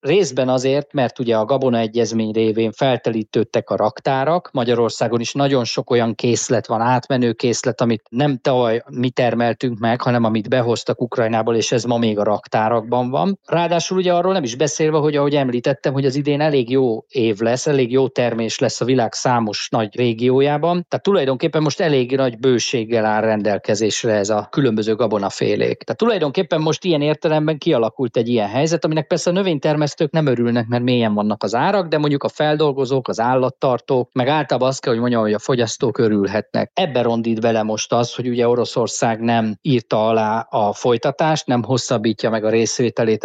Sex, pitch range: male, 115-150 Hz